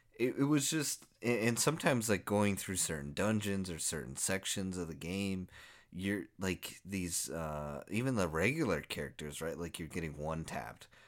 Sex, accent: male, American